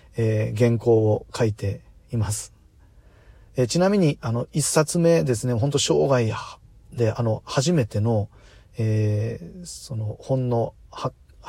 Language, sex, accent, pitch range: Japanese, male, native, 105-135 Hz